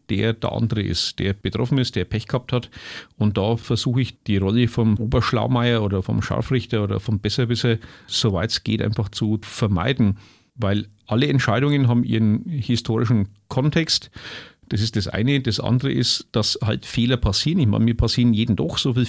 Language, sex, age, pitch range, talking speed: German, male, 40-59, 110-130 Hz, 180 wpm